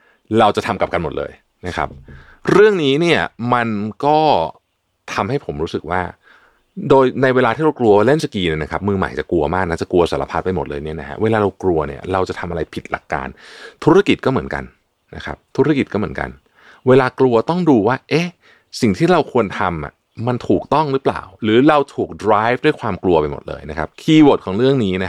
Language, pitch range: Thai, 90-125 Hz